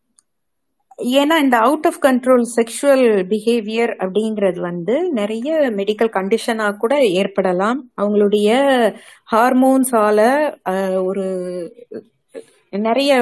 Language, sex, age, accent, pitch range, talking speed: Tamil, female, 30-49, native, 190-245 Hz, 80 wpm